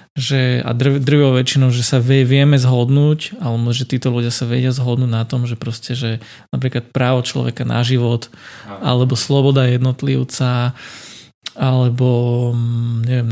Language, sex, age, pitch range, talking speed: Slovak, male, 20-39, 120-140 Hz, 140 wpm